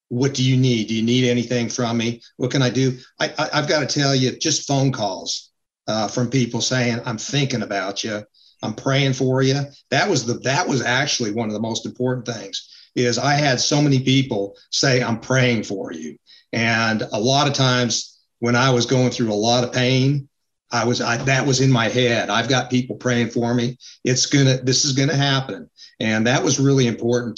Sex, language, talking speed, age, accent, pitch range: male, English, 215 wpm, 50-69, American, 115-135 Hz